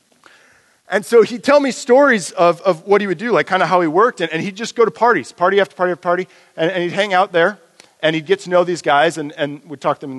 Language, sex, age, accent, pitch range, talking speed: English, male, 40-59, American, 125-170 Hz, 295 wpm